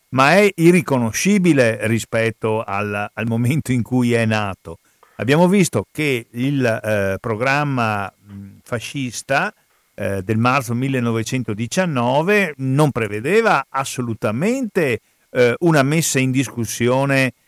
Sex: male